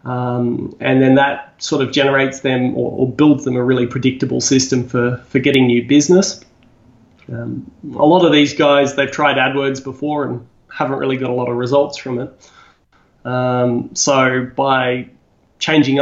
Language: English